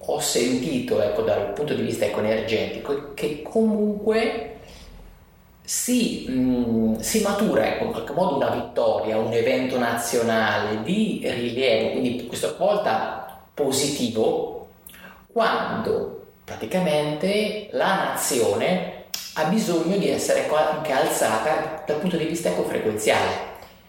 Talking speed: 110 wpm